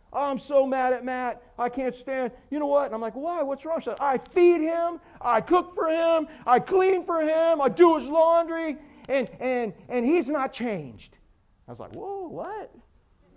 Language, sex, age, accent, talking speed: English, male, 40-59, American, 195 wpm